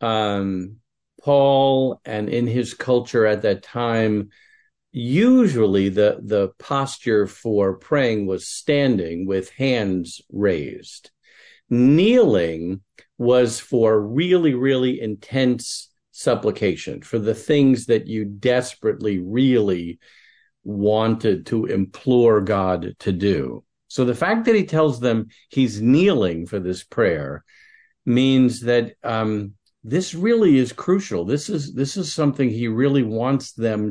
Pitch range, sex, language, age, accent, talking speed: 105-135 Hz, male, English, 50-69, American, 120 wpm